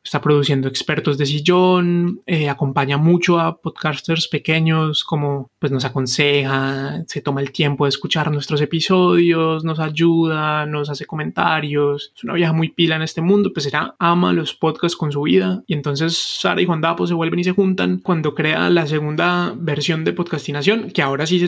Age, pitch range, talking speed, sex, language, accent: 20-39, 145-175 Hz, 185 wpm, male, Spanish, Colombian